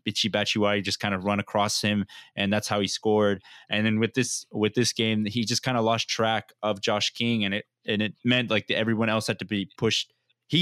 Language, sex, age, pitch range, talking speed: English, male, 20-39, 105-125 Hz, 245 wpm